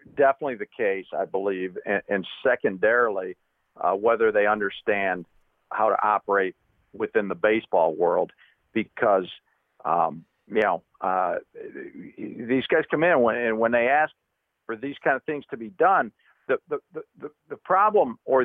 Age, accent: 50-69, American